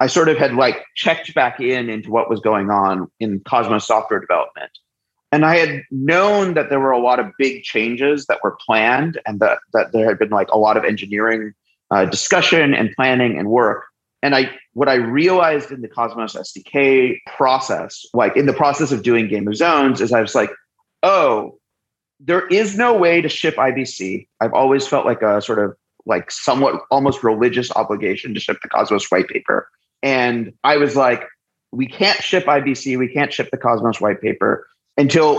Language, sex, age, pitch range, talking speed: English, male, 30-49, 115-145 Hz, 195 wpm